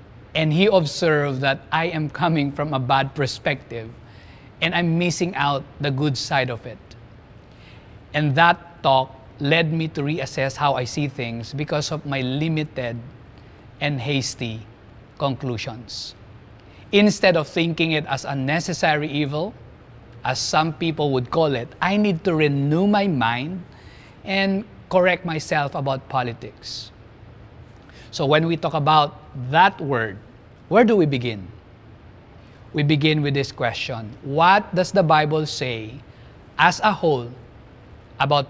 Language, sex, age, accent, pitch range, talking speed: English, male, 20-39, Filipino, 120-165 Hz, 135 wpm